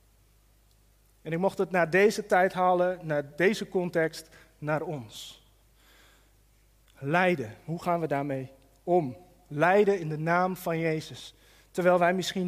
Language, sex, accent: Dutch, male, Dutch